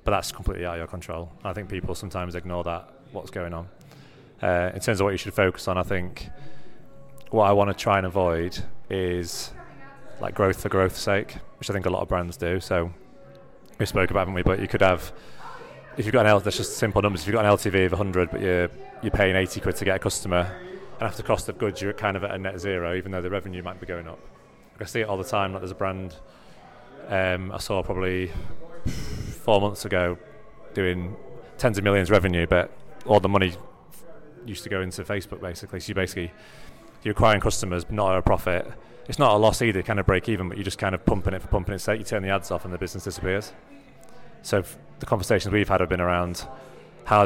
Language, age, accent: English, 30-49, British